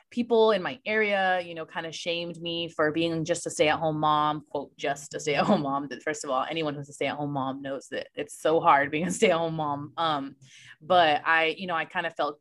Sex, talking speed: female, 230 wpm